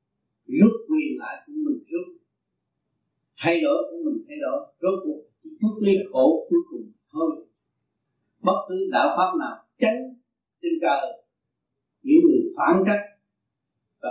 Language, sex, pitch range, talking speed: Vietnamese, male, 195-315 Hz, 140 wpm